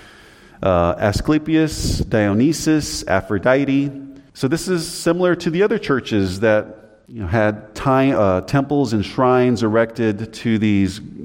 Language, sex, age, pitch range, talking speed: English, male, 40-59, 90-110 Hz, 110 wpm